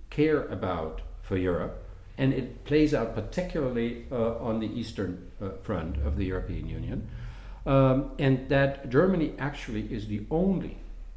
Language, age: English, 60-79